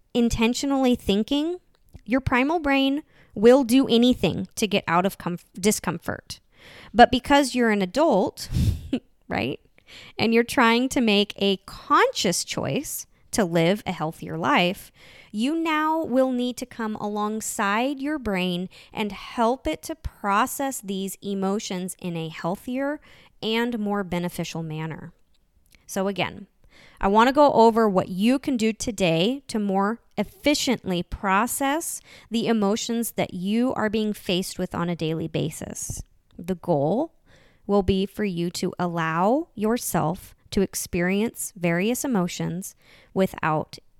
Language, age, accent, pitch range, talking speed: English, 20-39, American, 180-245 Hz, 135 wpm